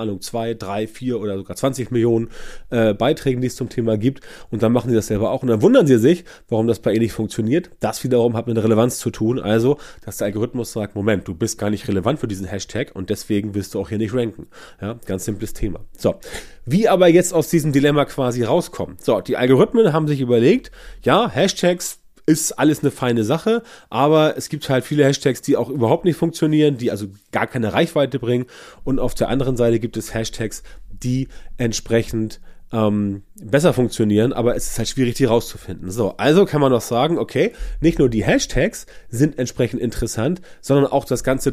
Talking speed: 210 wpm